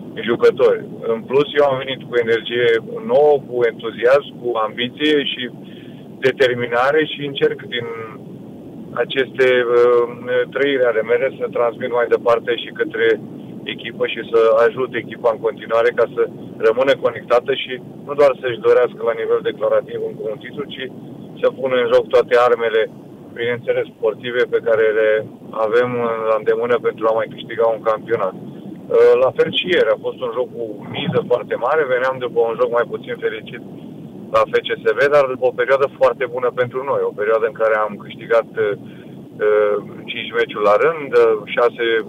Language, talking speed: Romanian, 165 wpm